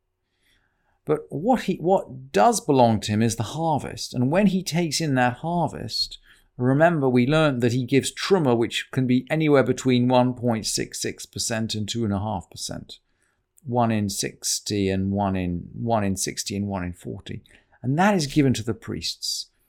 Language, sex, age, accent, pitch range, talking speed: English, male, 50-69, British, 95-145 Hz, 175 wpm